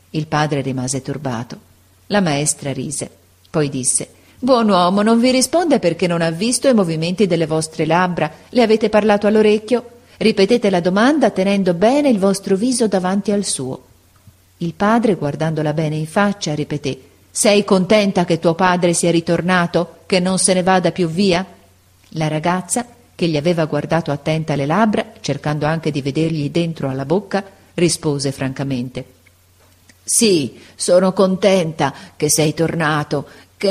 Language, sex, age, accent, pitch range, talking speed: Italian, female, 40-59, native, 140-195 Hz, 150 wpm